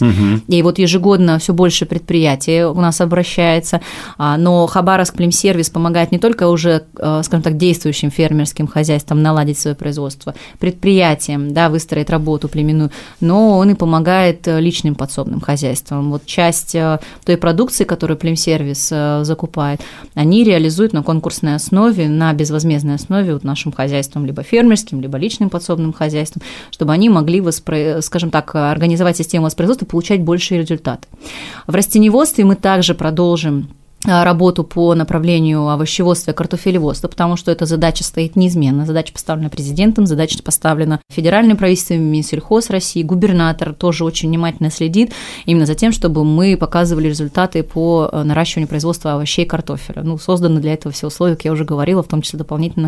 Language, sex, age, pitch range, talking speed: Russian, female, 20-39, 155-180 Hz, 150 wpm